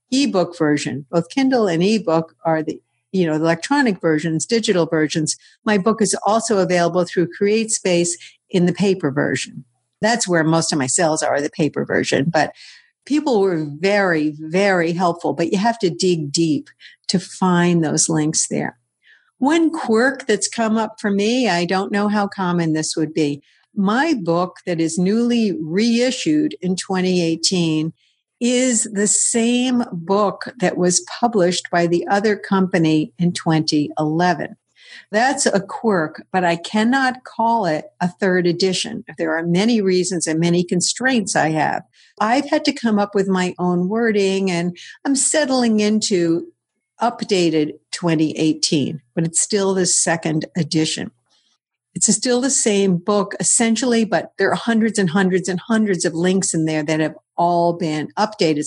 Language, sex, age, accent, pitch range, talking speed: English, female, 60-79, American, 170-220 Hz, 155 wpm